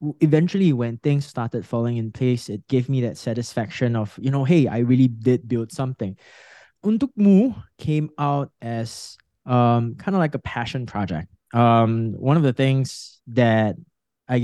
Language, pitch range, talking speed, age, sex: English, 110-140 Hz, 160 wpm, 20-39, male